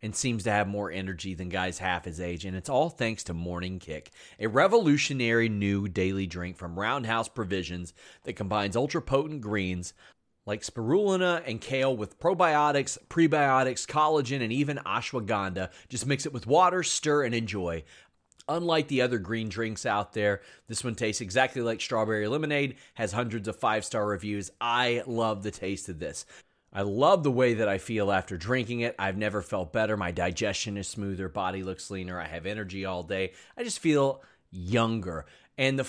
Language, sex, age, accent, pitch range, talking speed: English, male, 30-49, American, 100-140 Hz, 175 wpm